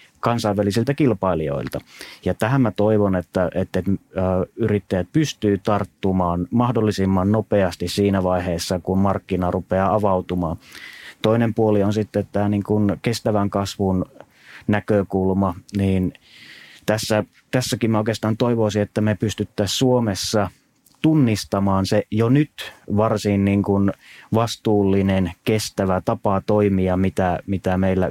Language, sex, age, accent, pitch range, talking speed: Finnish, male, 30-49, native, 95-105 Hz, 115 wpm